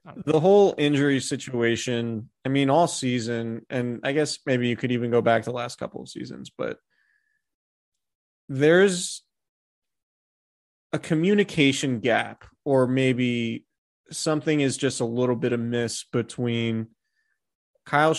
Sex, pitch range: male, 120-150 Hz